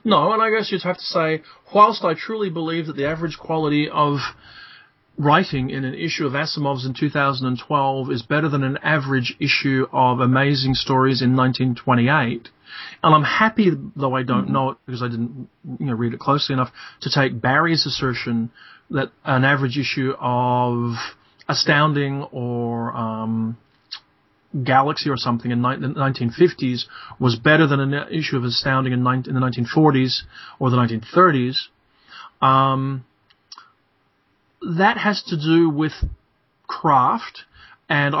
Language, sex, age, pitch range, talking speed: English, male, 30-49, 125-160 Hz, 140 wpm